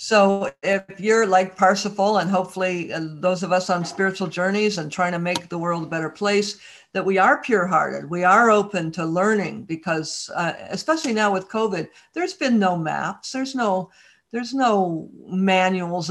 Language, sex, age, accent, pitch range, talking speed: English, female, 60-79, American, 185-230 Hz, 170 wpm